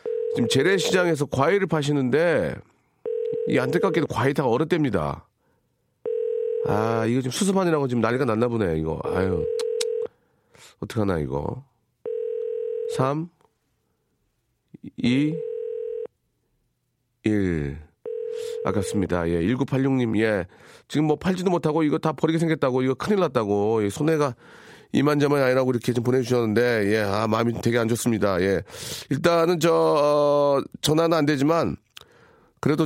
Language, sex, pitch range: Korean, male, 125-175 Hz